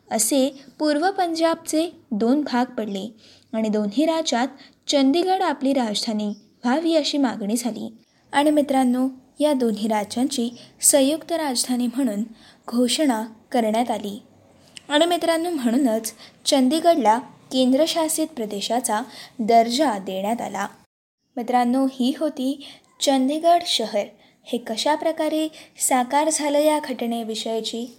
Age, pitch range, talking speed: 20-39, 235-300 Hz, 105 wpm